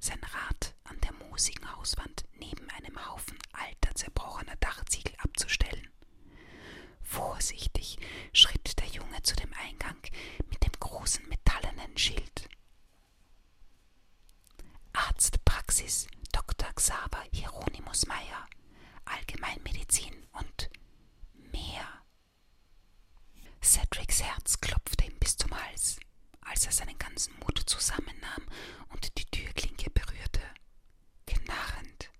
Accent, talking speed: German, 95 wpm